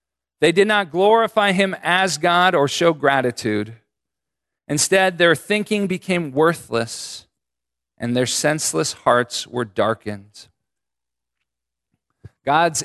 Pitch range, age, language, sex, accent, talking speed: 115-160 Hz, 40-59, English, male, American, 105 wpm